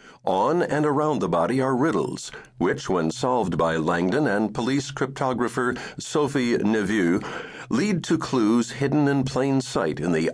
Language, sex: English, male